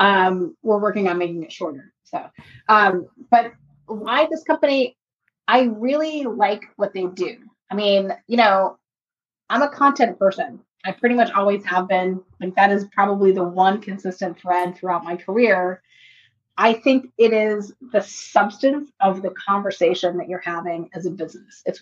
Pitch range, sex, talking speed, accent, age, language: 185-225 Hz, female, 165 wpm, American, 30-49, English